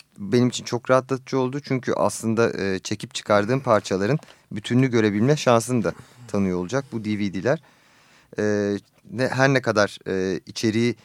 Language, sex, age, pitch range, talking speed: Turkish, male, 40-59, 100-125 Hz, 120 wpm